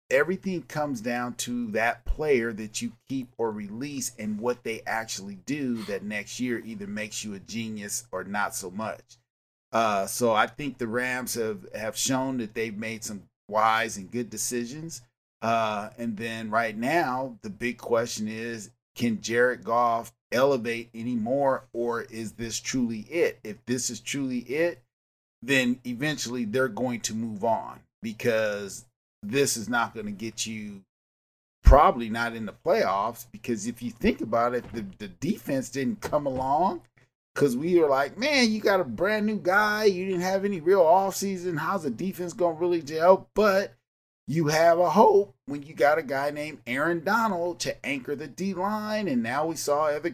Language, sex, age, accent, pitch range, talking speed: English, male, 40-59, American, 115-160 Hz, 180 wpm